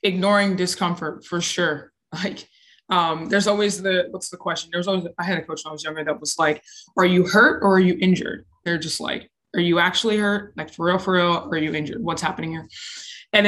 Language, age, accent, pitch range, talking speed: English, 20-39, American, 165-205 Hz, 225 wpm